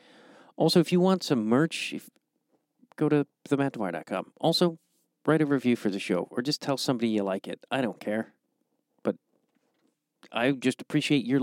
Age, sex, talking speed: 40-59, male, 165 wpm